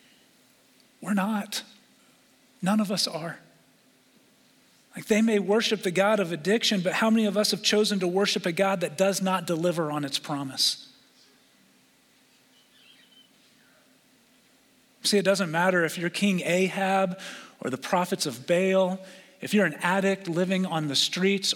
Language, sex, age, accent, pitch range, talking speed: English, male, 40-59, American, 150-195 Hz, 150 wpm